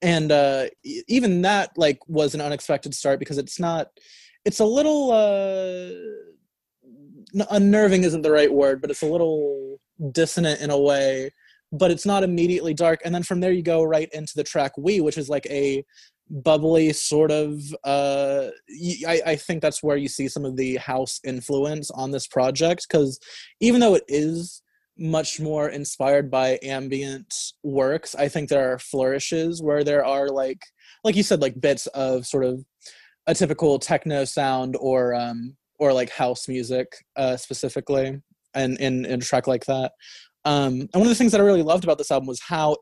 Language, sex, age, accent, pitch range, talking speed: English, male, 20-39, American, 135-170 Hz, 180 wpm